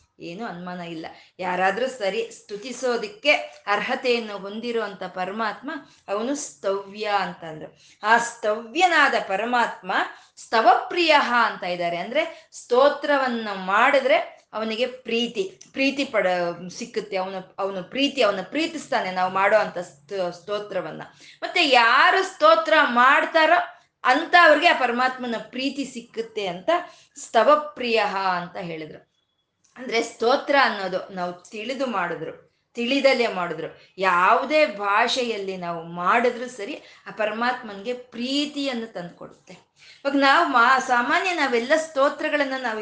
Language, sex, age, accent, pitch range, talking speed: Kannada, female, 20-39, native, 205-280 Hz, 95 wpm